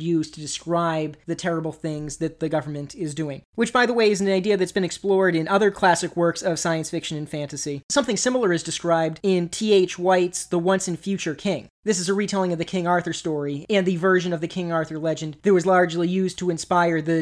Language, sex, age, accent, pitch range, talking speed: English, male, 30-49, American, 165-185 Hz, 230 wpm